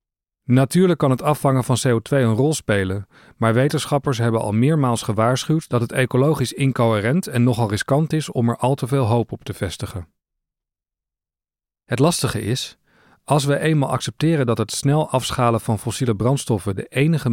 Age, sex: 40-59, male